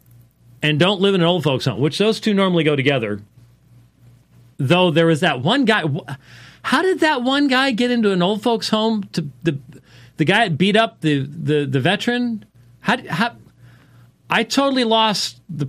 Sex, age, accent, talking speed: male, 40-59, American, 185 wpm